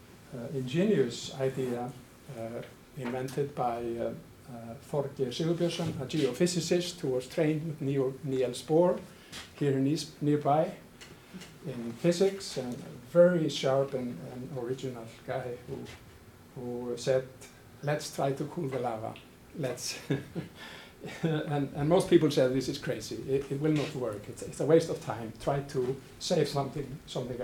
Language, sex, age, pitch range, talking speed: English, male, 50-69, 125-150 Hz, 140 wpm